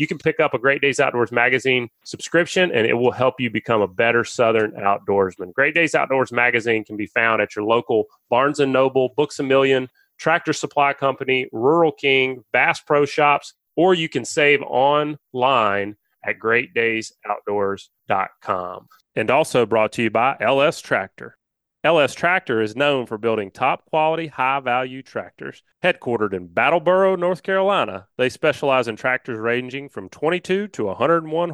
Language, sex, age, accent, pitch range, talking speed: English, male, 30-49, American, 115-160 Hz, 155 wpm